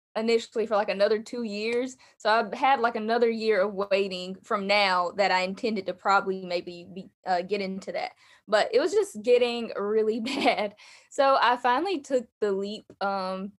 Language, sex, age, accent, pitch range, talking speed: English, female, 10-29, American, 195-250 Hz, 180 wpm